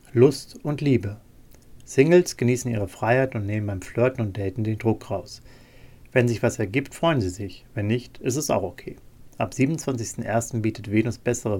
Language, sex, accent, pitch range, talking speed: German, male, German, 110-125 Hz, 175 wpm